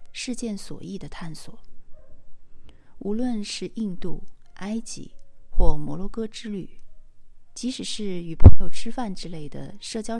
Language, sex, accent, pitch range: Chinese, female, native, 160-225 Hz